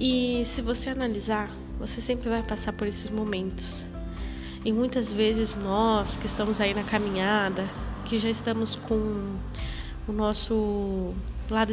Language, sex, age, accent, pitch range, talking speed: Portuguese, female, 10-29, Brazilian, 190-230 Hz, 140 wpm